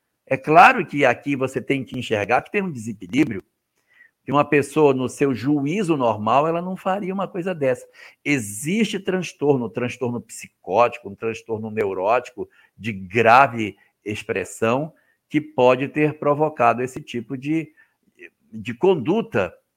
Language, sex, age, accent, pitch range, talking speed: Portuguese, male, 60-79, Brazilian, 120-185 Hz, 135 wpm